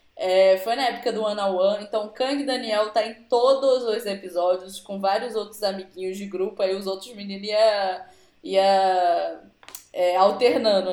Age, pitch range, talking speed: 10-29, 185-250 Hz, 155 wpm